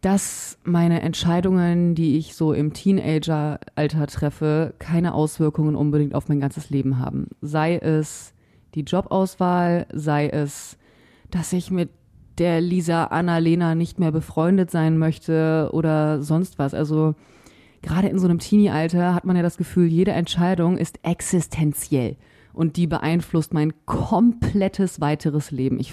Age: 30-49